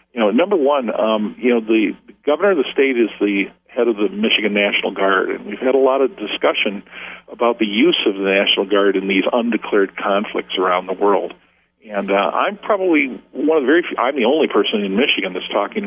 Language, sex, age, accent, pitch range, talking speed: English, male, 50-69, American, 105-130 Hz, 220 wpm